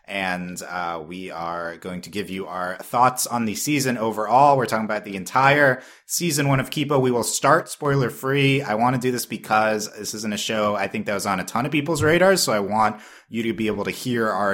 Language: English